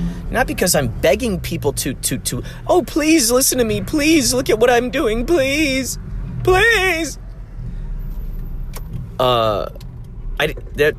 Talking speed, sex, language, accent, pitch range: 130 wpm, male, English, American, 115-180 Hz